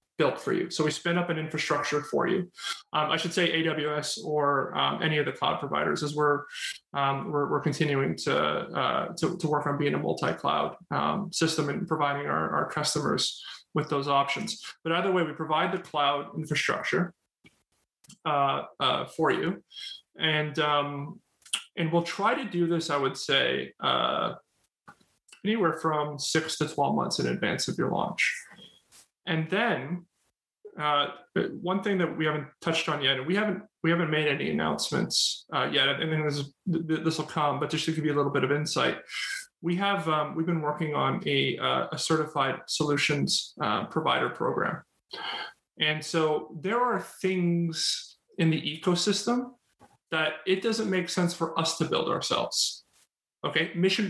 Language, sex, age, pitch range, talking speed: English, male, 30-49, 150-180 Hz, 175 wpm